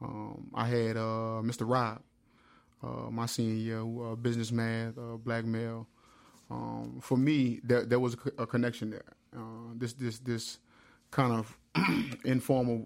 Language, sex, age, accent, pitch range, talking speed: English, male, 20-39, American, 115-125 Hz, 165 wpm